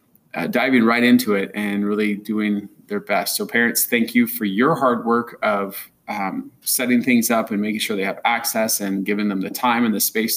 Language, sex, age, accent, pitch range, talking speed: English, male, 20-39, American, 105-120 Hz, 215 wpm